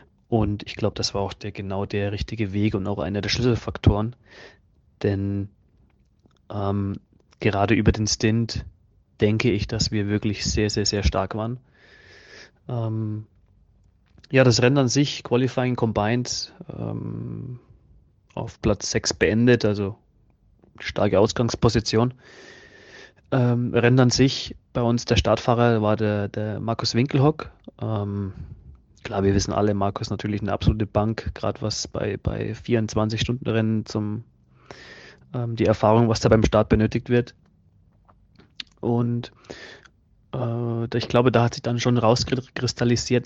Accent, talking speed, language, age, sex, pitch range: German, 130 wpm, German, 30-49, male, 105-120 Hz